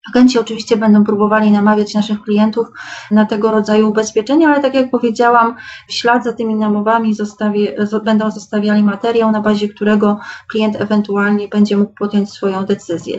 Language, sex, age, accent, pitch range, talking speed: Polish, female, 30-49, native, 210-230 Hz, 150 wpm